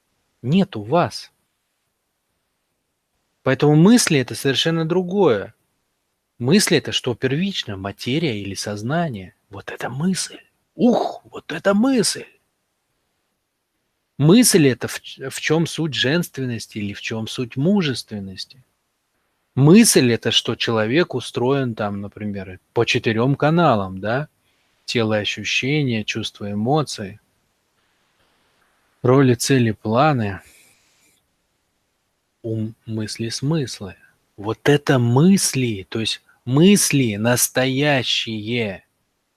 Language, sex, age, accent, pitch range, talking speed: Russian, male, 20-39, native, 110-140 Hz, 100 wpm